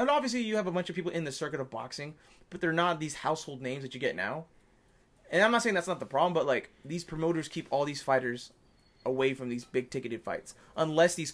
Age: 20-39